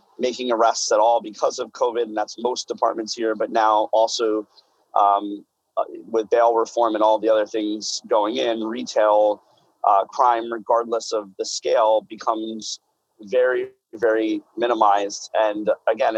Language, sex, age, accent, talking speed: English, male, 30-49, American, 145 wpm